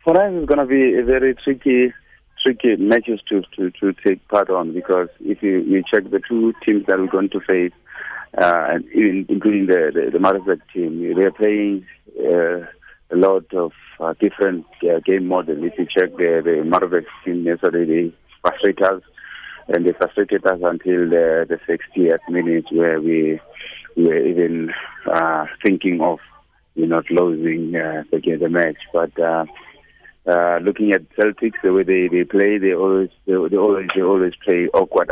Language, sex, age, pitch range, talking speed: English, male, 30-49, 85-100 Hz, 180 wpm